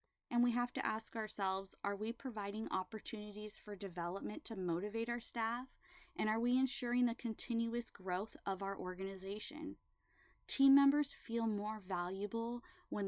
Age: 20-39